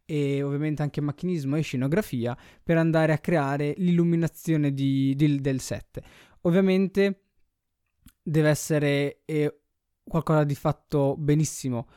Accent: native